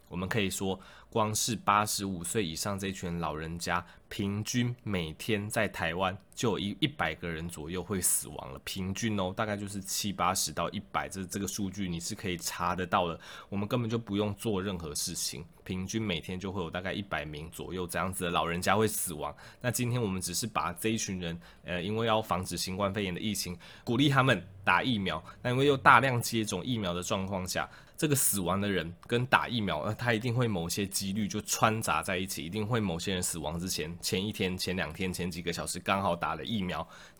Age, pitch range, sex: 20-39, 90-110 Hz, male